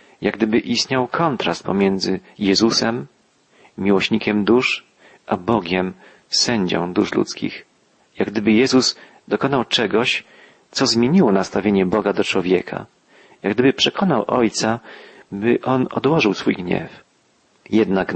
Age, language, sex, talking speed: 40-59, Polish, male, 110 wpm